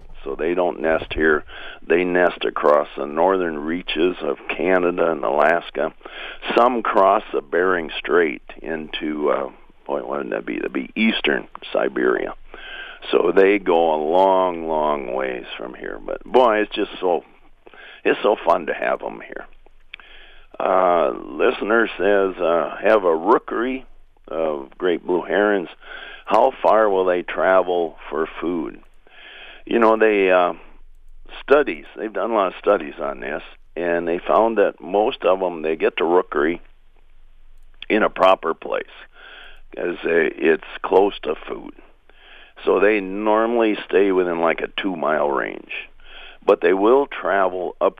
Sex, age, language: male, 50-69, English